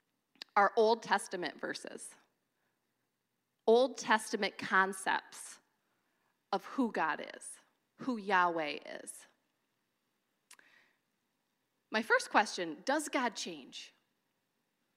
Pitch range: 200-285 Hz